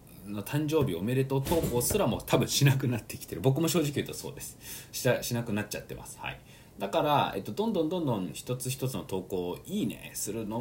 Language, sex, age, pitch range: Japanese, male, 20-39, 110-170 Hz